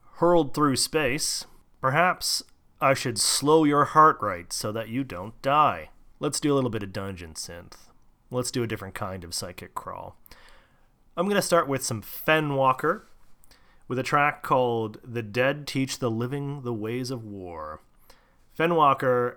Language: English